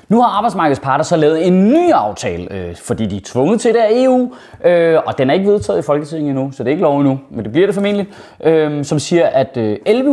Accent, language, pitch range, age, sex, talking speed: native, Danish, 145-210 Hz, 30-49, male, 255 wpm